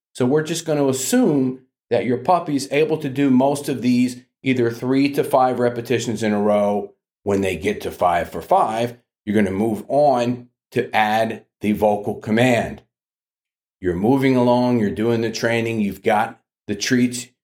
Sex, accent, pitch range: male, American, 100-140 Hz